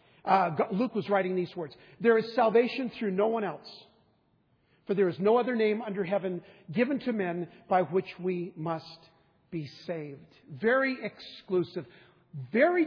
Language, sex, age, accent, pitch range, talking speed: English, male, 50-69, American, 155-210 Hz, 155 wpm